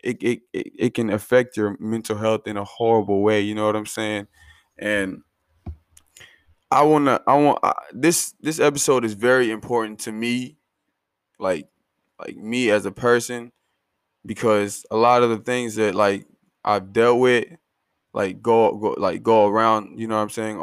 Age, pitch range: 20-39, 110-125 Hz